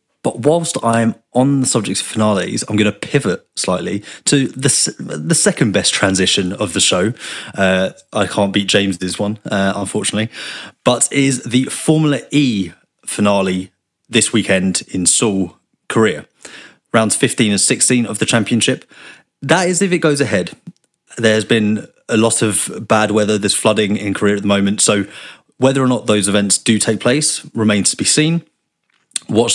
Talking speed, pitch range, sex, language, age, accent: 165 wpm, 100-130 Hz, male, English, 30-49, British